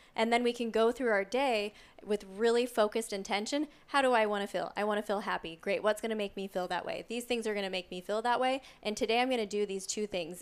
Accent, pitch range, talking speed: American, 195-235 Hz, 295 wpm